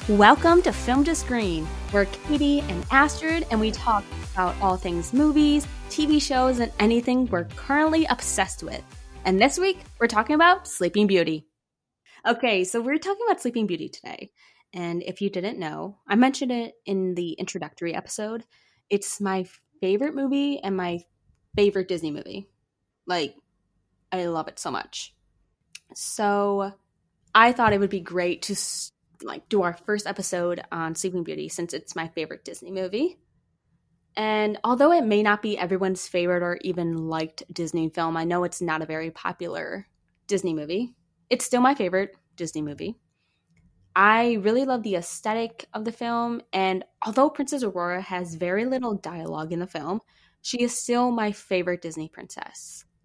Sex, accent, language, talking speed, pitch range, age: female, American, English, 160 wpm, 175-245 Hz, 20-39